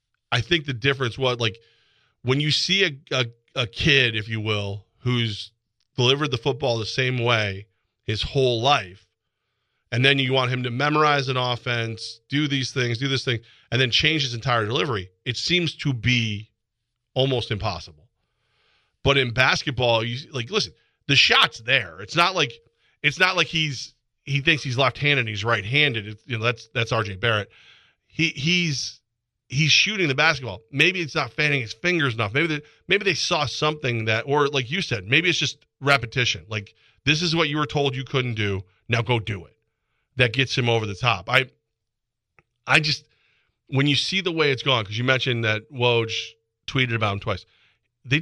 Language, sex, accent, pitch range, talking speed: English, male, American, 115-140 Hz, 190 wpm